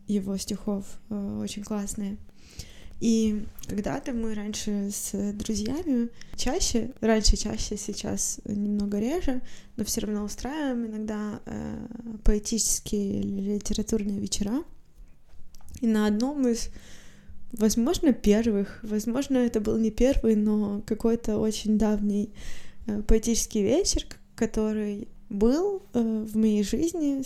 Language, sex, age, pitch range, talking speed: Ukrainian, female, 20-39, 205-235 Hz, 110 wpm